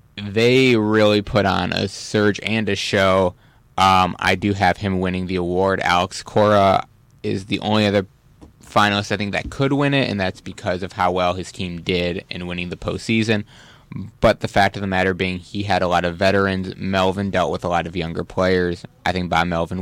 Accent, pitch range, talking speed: American, 95-110 Hz, 205 wpm